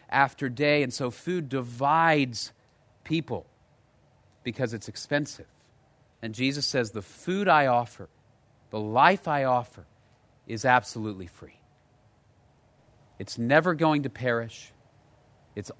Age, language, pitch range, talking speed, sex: 40-59, English, 110-150 Hz, 115 wpm, male